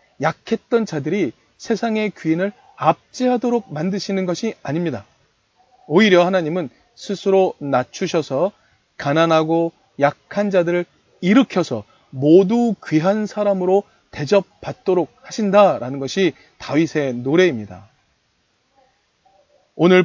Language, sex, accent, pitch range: Korean, male, native, 155-205 Hz